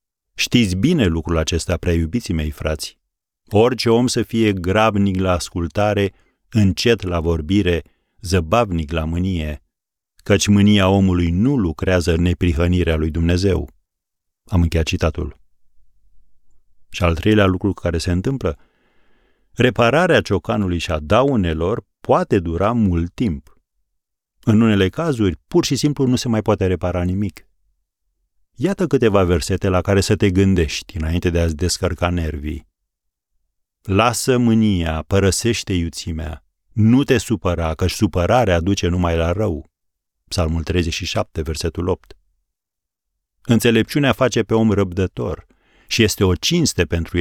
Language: Romanian